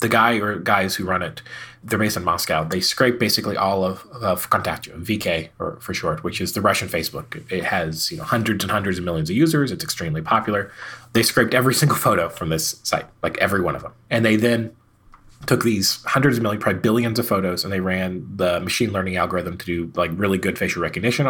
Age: 30-49